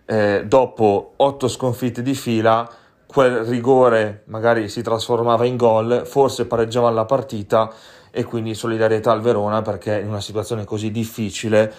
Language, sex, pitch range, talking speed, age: Italian, male, 110-130 Hz, 145 wpm, 30-49